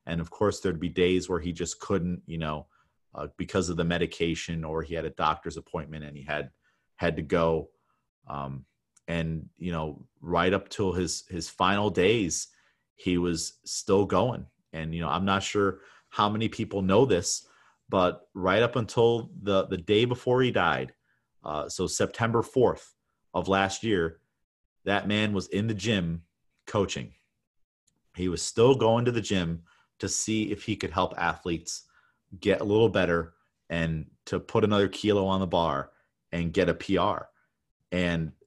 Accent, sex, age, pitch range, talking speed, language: American, male, 30-49, 85-100 Hz, 170 wpm, English